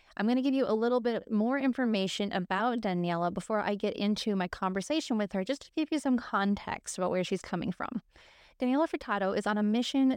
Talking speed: 220 wpm